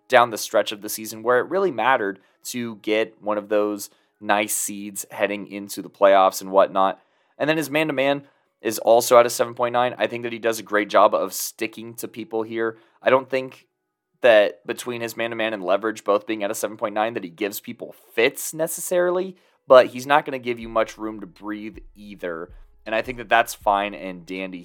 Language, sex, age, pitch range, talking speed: English, male, 20-39, 100-120 Hz, 205 wpm